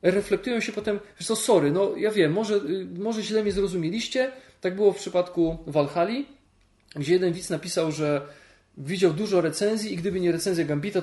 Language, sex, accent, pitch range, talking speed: Polish, male, native, 155-205 Hz, 175 wpm